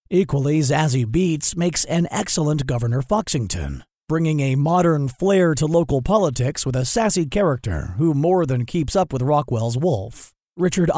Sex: male